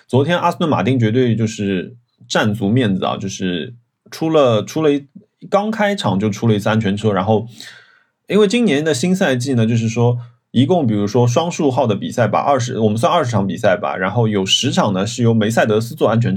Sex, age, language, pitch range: male, 20-39, Chinese, 105-145 Hz